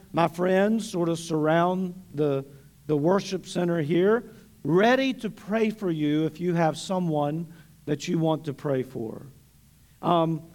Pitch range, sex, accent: 160-215 Hz, male, American